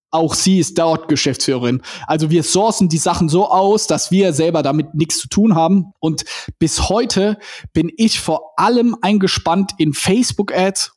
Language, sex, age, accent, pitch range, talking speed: German, male, 20-39, German, 155-210 Hz, 165 wpm